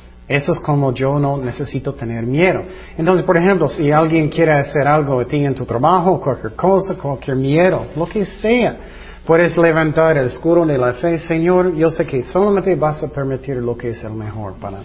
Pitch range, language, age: 130-170 Hz, Spanish, 40-59